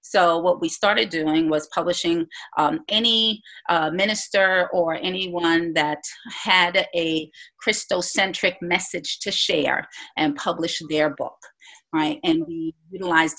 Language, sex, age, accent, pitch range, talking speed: English, female, 40-59, American, 170-235 Hz, 125 wpm